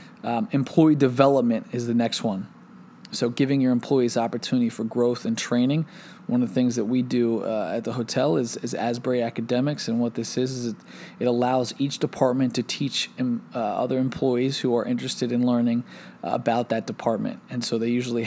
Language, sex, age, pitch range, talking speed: English, male, 20-39, 115-130 Hz, 190 wpm